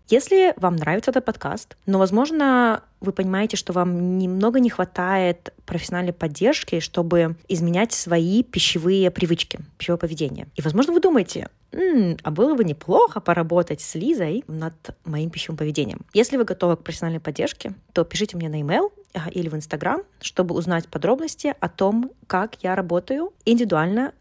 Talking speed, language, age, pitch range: 150 wpm, Russian, 20-39, 160-200 Hz